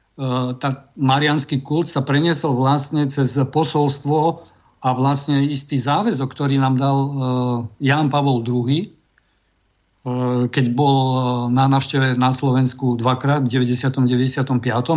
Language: Slovak